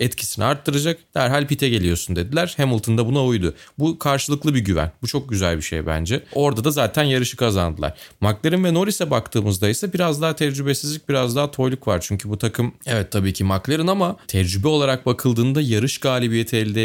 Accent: native